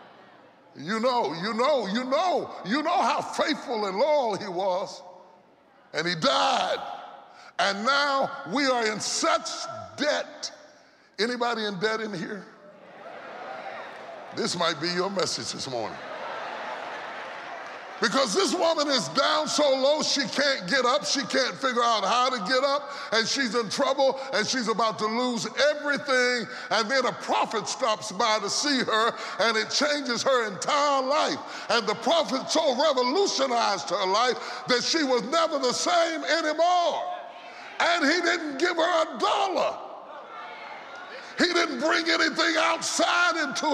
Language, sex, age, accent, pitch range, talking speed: English, female, 30-49, American, 240-330 Hz, 145 wpm